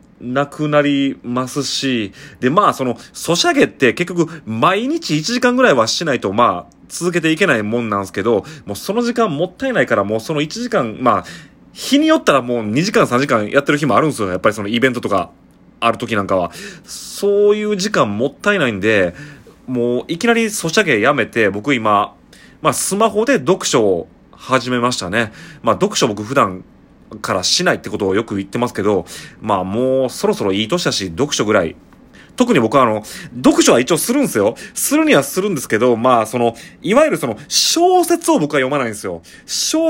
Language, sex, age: Japanese, male, 30-49